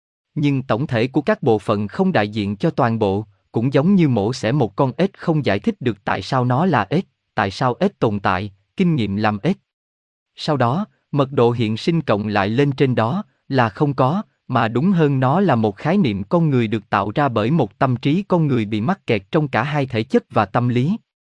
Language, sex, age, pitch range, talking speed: Vietnamese, male, 20-39, 110-160 Hz, 235 wpm